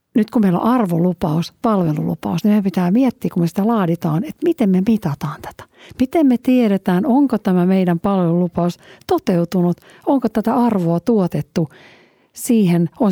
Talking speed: 150 wpm